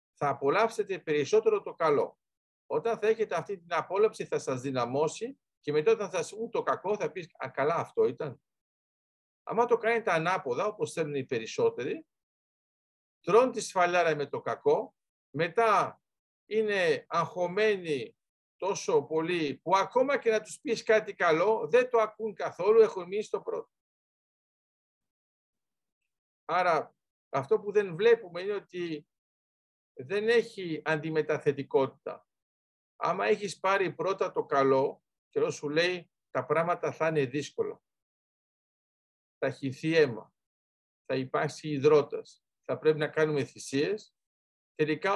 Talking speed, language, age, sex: 130 wpm, Greek, 50-69, male